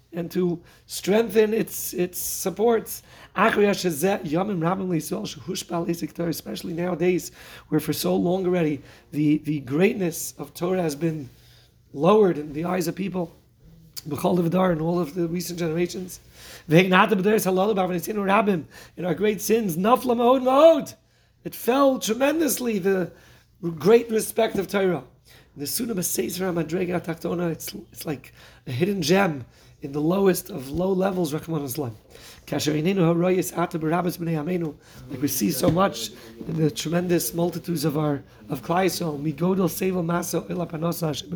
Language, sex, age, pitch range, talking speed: English, male, 30-49, 150-185 Hz, 105 wpm